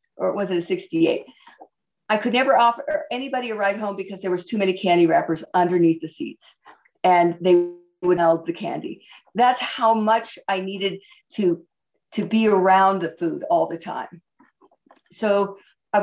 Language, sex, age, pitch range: English, female, 50-69, 185-240 Hz